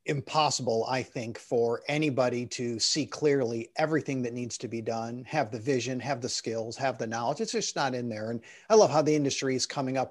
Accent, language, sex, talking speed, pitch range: American, English, male, 220 wpm, 130-170 Hz